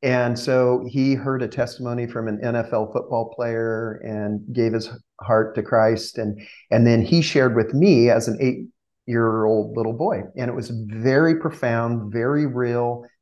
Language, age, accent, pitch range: English, 40-59, American, 110-125 Hz